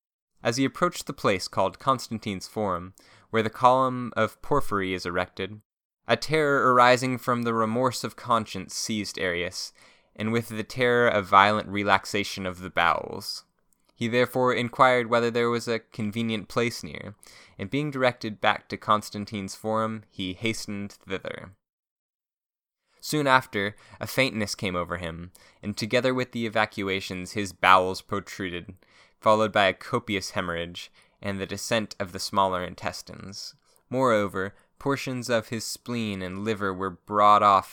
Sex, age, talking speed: male, 20-39, 145 wpm